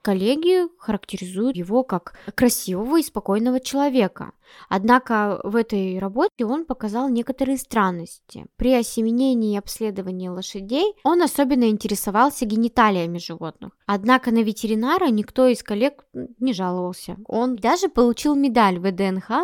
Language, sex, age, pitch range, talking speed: Russian, female, 20-39, 195-255 Hz, 120 wpm